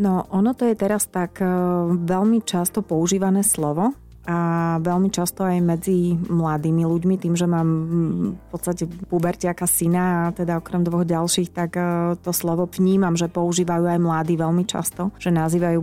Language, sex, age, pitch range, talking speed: Slovak, female, 30-49, 165-180 Hz, 155 wpm